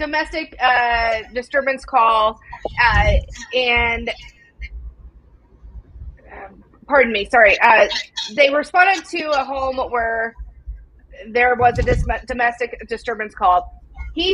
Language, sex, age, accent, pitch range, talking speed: English, female, 30-49, American, 235-315 Hz, 100 wpm